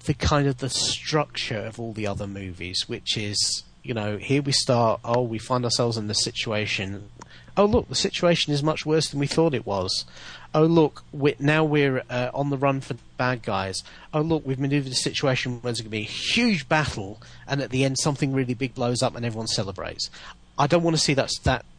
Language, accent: English, British